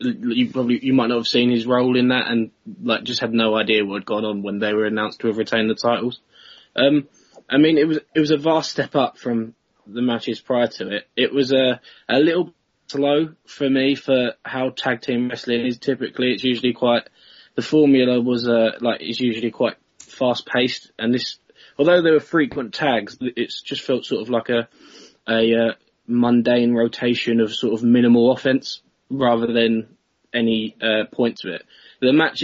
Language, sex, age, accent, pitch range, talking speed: English, male, 20-39, British, 115-125 Hz, 200 wpm